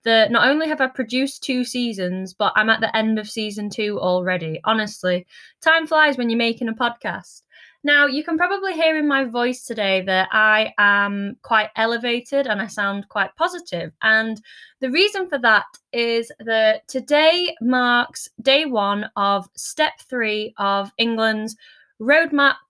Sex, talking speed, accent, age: female, 160 wpm, British, 20-39